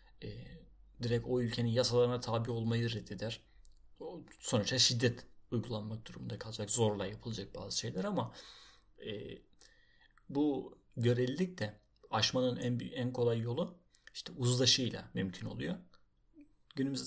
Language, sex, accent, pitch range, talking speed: Turkish, male, native, 105-120 Hz, 115 wpm